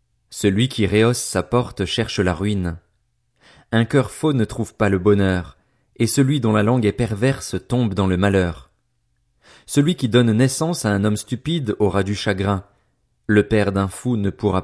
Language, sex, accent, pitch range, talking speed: French, male, French, 95-120 Hz, 180 wpm